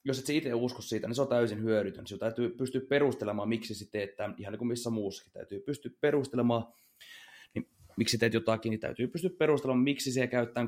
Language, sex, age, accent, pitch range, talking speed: Finnish, male, 30-49, native, 110-130 Hz, 210 wpm